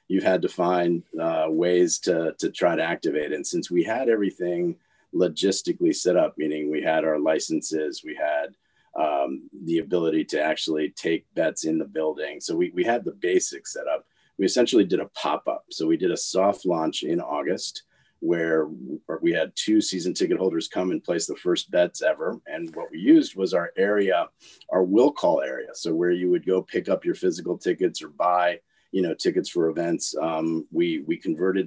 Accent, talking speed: American, 195 wpm